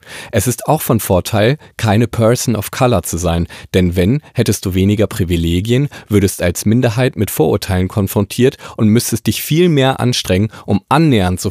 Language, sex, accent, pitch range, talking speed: German, male, German, 95-120 Hz, 165 wpm